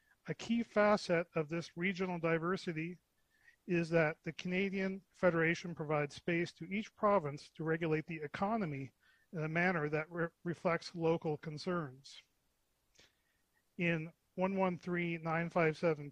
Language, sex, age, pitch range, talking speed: English, male, 40-59, 155-180 Hz, 115 wpm